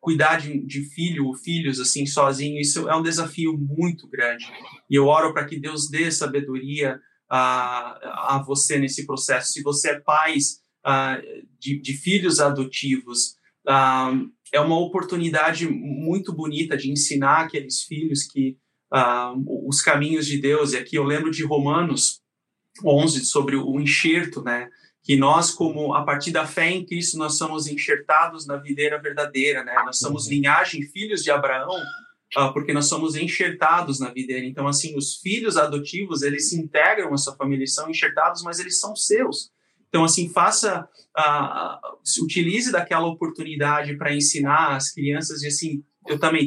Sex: male